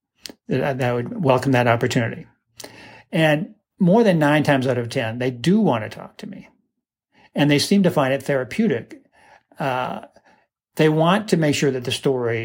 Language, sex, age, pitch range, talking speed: English, male, 60-79, 140-190 Hz, 180 wpm